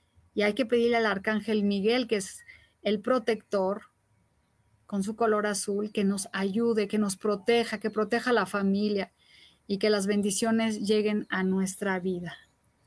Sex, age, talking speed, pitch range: female, 30-49, 160 wpm, 200-235 Hz